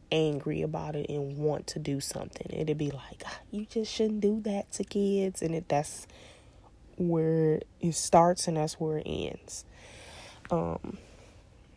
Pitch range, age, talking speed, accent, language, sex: 110-180 Hz, 20-39, 150 wpm, American, English, female